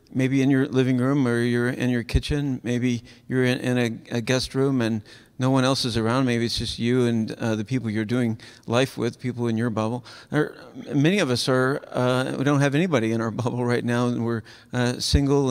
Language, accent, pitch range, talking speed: English, American, 110-130 Hz, 215 wpm